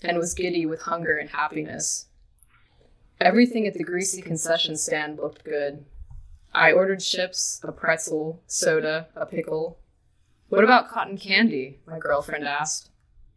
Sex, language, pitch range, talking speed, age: female, English, 150-190 Hz, 135 wpm, 20-39